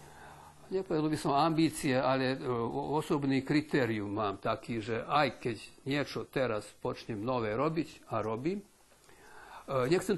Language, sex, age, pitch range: Slovak, male, 60-79, 120-155 Hz